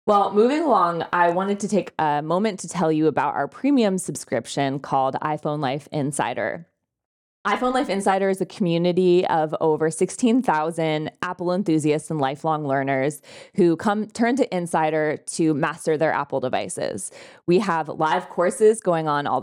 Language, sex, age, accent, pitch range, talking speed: English, female, 20-39, American, 150-180 Hz, 160 wpm